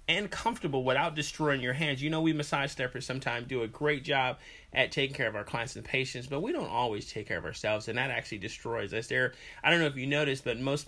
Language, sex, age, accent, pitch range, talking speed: English, male, 30-49, American, 115-145 Hz, 250 wpm